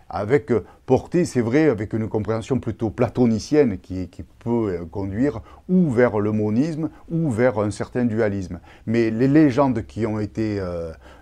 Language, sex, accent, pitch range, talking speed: French, male, French, 95-120 Hz, 160 wpm